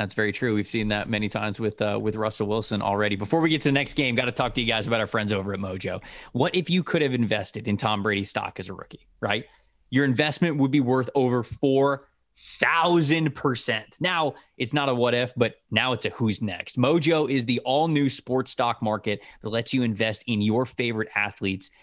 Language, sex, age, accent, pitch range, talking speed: English, male, 20-39, American, 105-135 Hz, 225 wpm